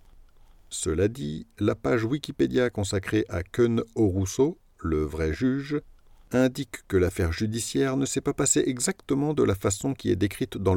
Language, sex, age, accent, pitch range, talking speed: French, male, 50-69, French, 95-130 Hz, 155 wpm